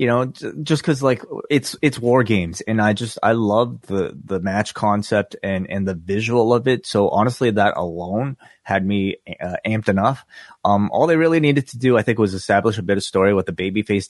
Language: English